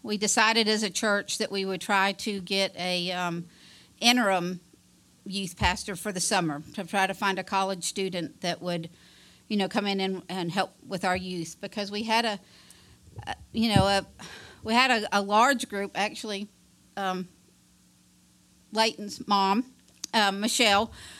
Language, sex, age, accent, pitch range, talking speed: English, female, 50-69, American, 185-225 Hz, 160 wpm